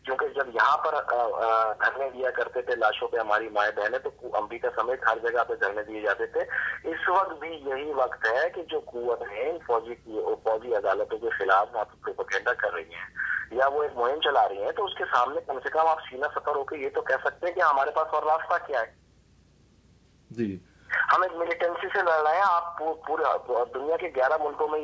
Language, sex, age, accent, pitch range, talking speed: English, male, 30-49, Indian, 155-245 Hz, 120 wpm